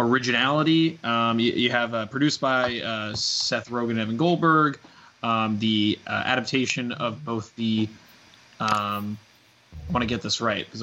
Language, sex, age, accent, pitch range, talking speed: English, male, 20-39, American, 110-130 Hz, 155 wpm